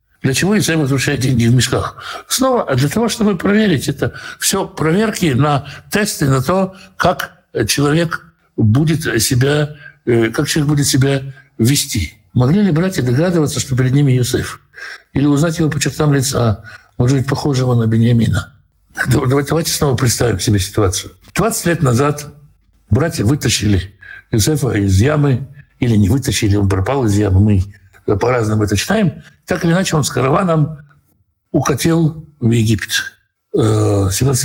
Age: 60-79